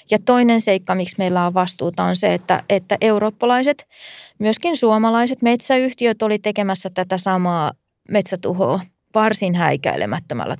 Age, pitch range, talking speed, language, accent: 30-49, 185-220 Hz, 125 wpm, Finnish, native